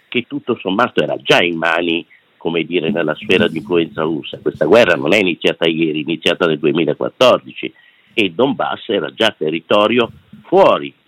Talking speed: 160 wpm